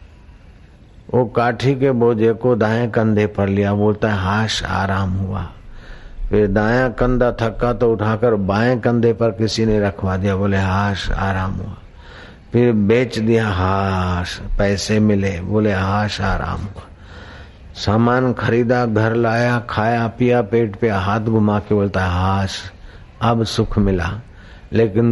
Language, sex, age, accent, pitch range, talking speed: Hindi, male, 50-69, native, 100-115 Hz, 140 wpm